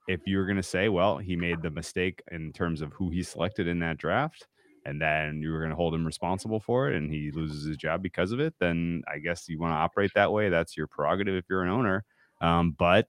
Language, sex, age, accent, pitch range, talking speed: English, male, 30-49, American, 75-90 Hz, 260 wpm